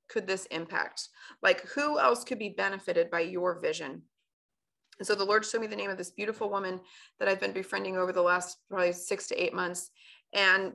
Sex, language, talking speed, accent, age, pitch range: female, English, 205 wpm, American, 30-49, 185-225 Hz